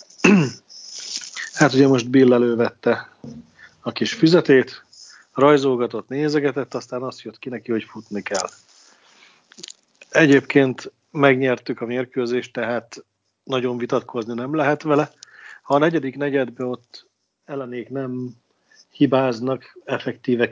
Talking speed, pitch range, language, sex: 110 wpm, 120-135 Hz, Hungarian, male